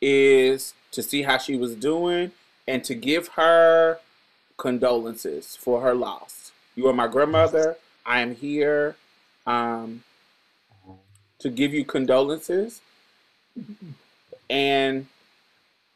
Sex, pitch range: male, 135-185 Hz